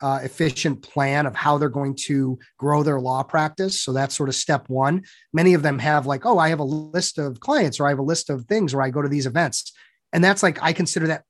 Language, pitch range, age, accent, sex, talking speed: English, 135-165 Hz, 30-49, American, male, 260 wpm